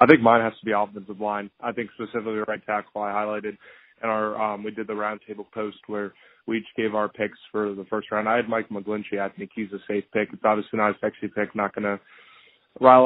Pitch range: 105-115 Hz